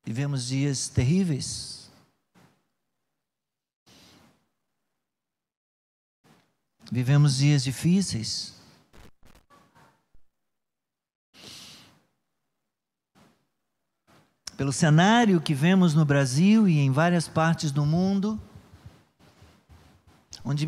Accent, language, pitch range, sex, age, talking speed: Brazilian, Portuguese, 140-185 Hz, male, 50-69, 55 wpm